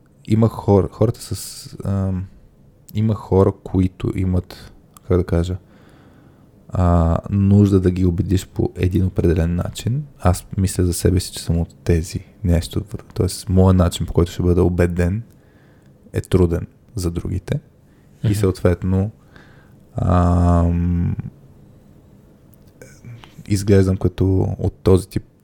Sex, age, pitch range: male, 20-39, 90-105 Hz